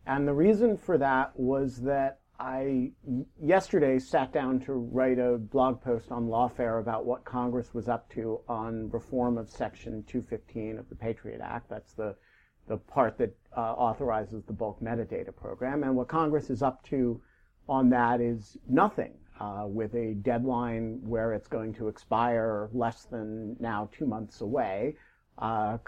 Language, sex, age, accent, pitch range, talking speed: English, male, 50-69, American, 115-135 Hz, 160 wpm